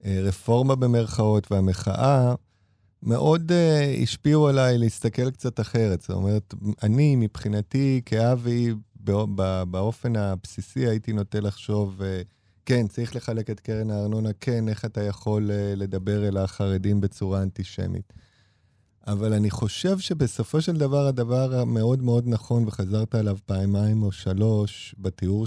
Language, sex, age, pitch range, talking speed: Hebrew, male, 30-49, 100-125 Hz, 125 wpm